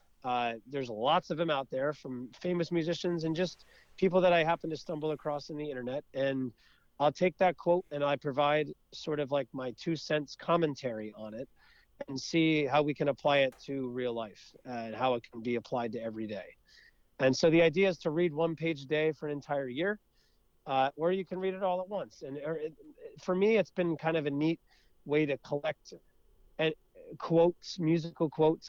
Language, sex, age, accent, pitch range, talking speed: English, male, 40-59, American, 130-165 Hz, 210 wpm